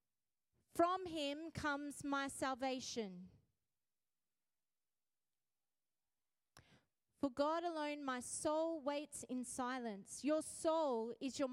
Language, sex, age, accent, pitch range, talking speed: English, female, 30-49, Australian, 260-360 Hz, 90 wpm